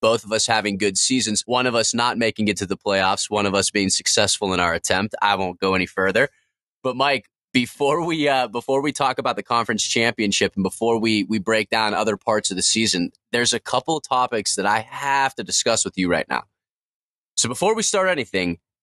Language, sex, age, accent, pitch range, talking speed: English, male, 20-39, American, 100-125 Hz, 225 wpm